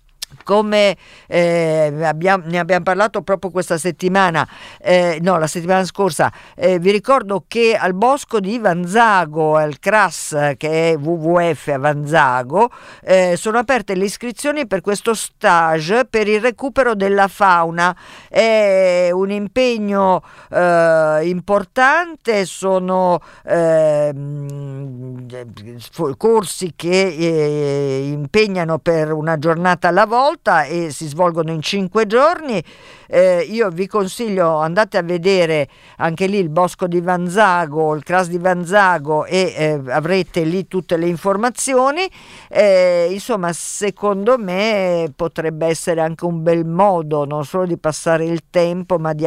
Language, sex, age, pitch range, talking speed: Italian, female, 50-69, 165-210 Hz, 130 wpm